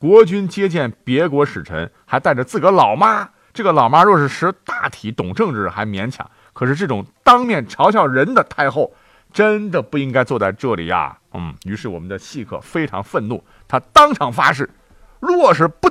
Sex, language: male, Chinese